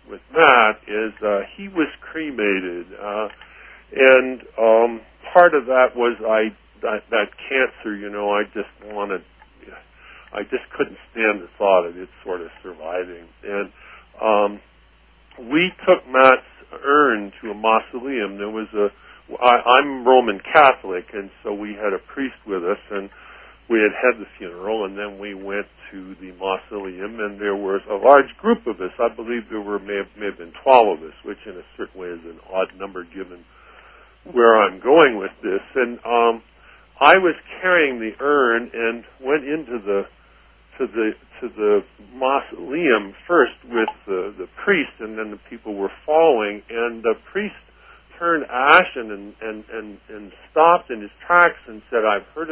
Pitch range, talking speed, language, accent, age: 100-130 Hz, 165 wpm, English, American, 50-69